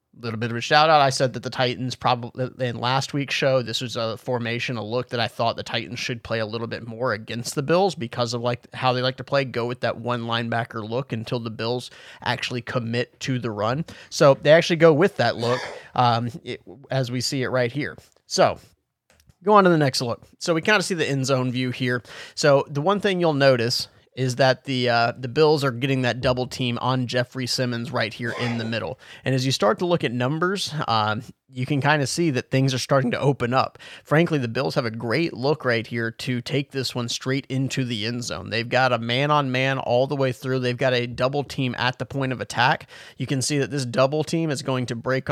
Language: English